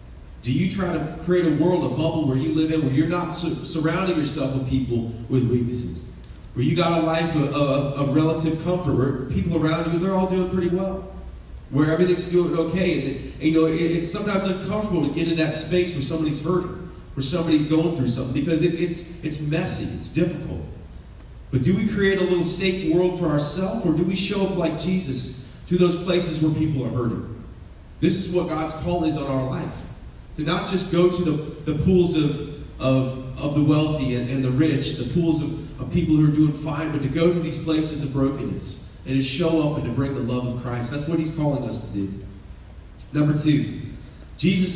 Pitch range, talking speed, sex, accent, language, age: 130-170 Hz, 210 wpm, male, American, English, 30-49